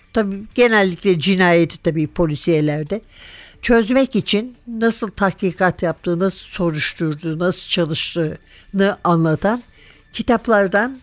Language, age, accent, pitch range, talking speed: Turkish, 60-79, native, 180-240 Hz, 85 wpm